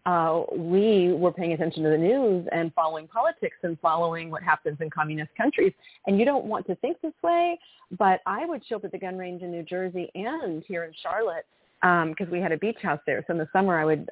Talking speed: 240 wpm